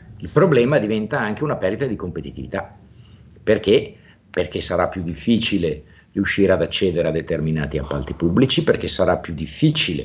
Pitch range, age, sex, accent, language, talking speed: 80-110 Hz, 50-69, male, native, Italian, 145 wpm